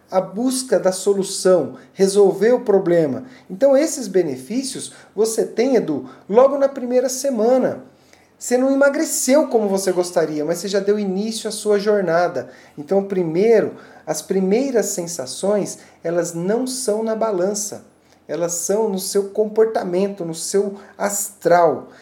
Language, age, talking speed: Portuguese, 40-59, 135 wpm